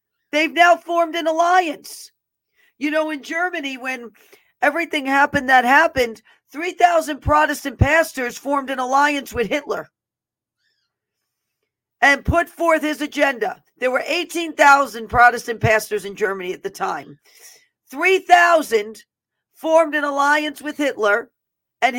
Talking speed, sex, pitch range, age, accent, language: 120 wpm, female, 245-315 Hz, 50-69, American, English